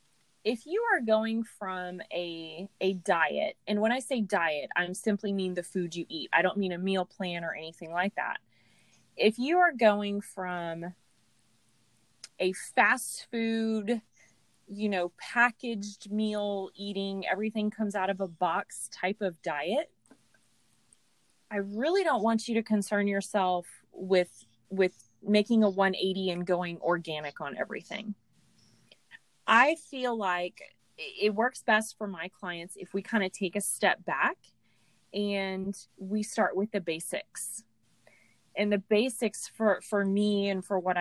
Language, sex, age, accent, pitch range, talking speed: English, female, 20-39, American, 180-215 Hz, 150 wpm